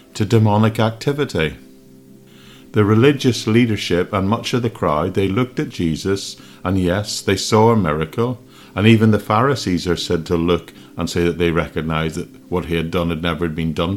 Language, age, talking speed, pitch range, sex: English, 50-69, 185 wpm, 80-110 Hz, male